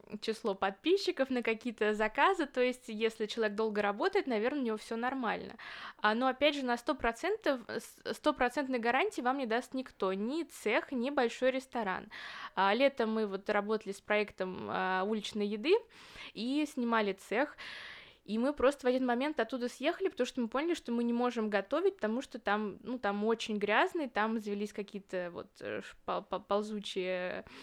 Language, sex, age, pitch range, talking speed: Russian, female, 20-39, 215-275 Hz, 155 wpm